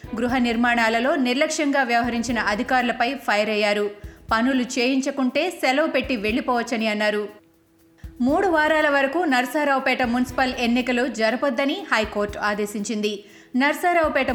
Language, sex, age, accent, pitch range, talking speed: Telugu, female, 20-39, native, 220-275 Hz, 95 wpm